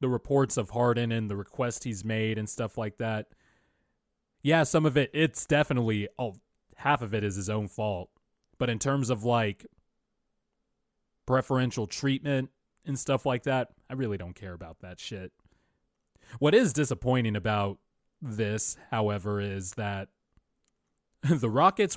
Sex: male